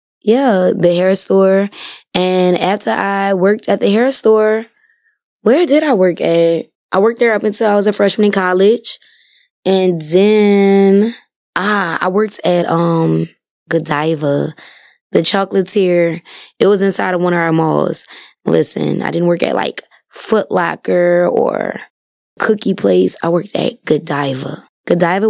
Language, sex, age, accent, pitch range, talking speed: English, female, 20-39, American, 165-205 Hz, 145 wpm